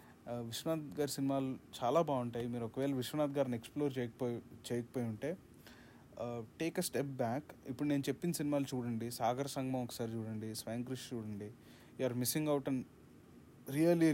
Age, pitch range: 30-49, 120-150 Hz